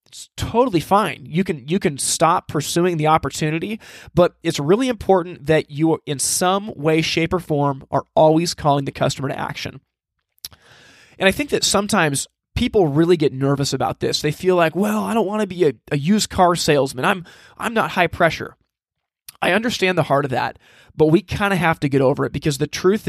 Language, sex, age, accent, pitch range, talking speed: English, male, 20-39, American, 145-190 Hz, 205 wpm